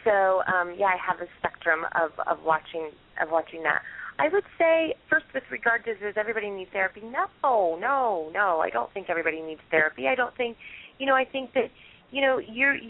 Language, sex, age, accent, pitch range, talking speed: English, female, 30-49, American, 190-245 Hz, 205 wpm